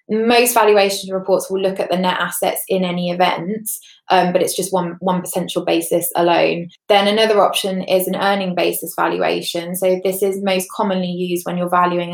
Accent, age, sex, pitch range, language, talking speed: British, 20-39, female, 180-195 Hz, English, 190 wpm